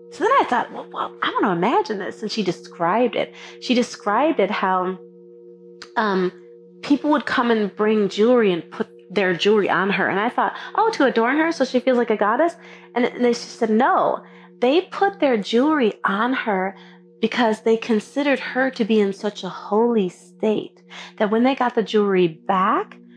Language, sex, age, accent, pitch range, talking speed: English, female, 30-49, American, 180-240 Hz, 190 wpm